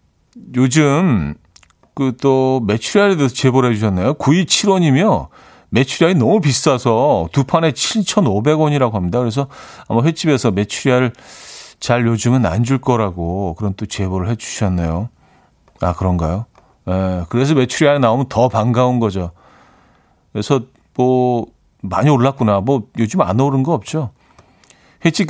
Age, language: 40-59, Korean